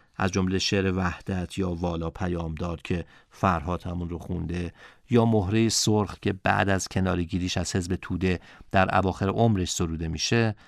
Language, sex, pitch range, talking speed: Persian, male, 85-100 Hz, 165 wpm